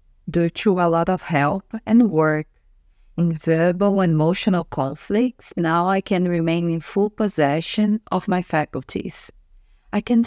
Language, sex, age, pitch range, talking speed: English, female, 50-69, 135-180 Hz, 145 wpm